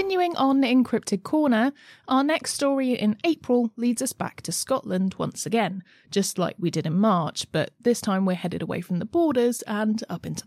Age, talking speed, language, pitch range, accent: 30-49, 195 wpm, English, 175-245 Hz, British